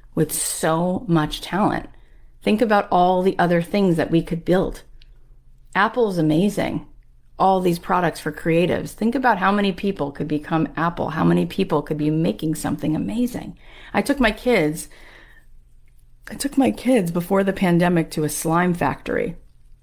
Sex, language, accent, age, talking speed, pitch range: female, English, American, 40-59, 155 wpm, 145-200 Hz